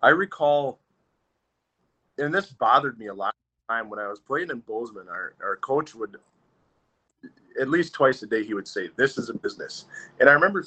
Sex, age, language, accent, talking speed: male, 40-59, English, American, 195 wpm